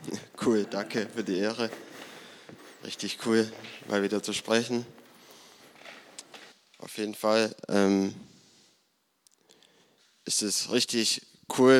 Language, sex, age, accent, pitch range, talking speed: German, male, 20-39, German, 105-120 Hz, 100 wpm